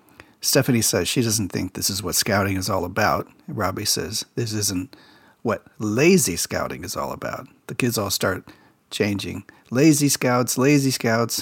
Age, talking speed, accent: 40-59, 165 wpm, American